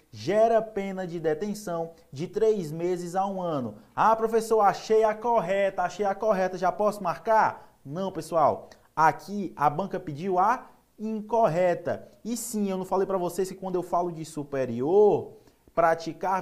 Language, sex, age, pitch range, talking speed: Portuguese, male, 20-39, 155-205 Hz, 155 wpm